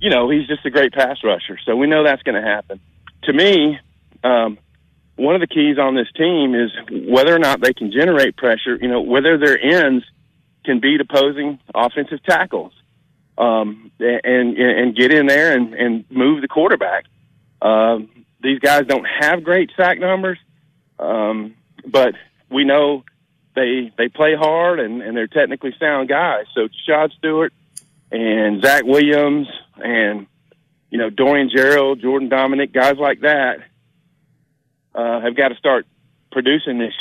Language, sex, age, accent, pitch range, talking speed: English, male, 40-59, American, 120-150 Hz, 160 wpm